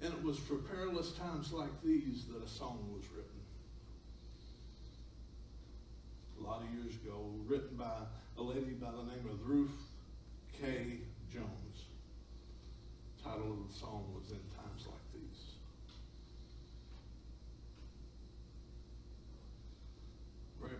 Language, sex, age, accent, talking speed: English, male, 60-79, American, 115 wpm